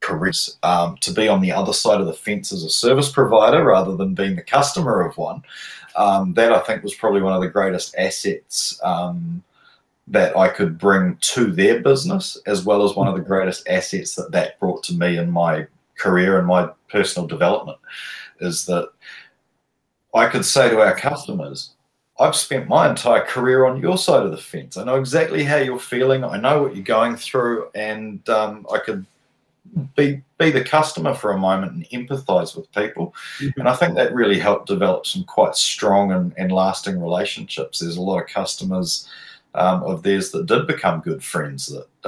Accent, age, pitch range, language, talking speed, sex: Australian, 30-49, 95-135 Hz, English, 195 wpm, male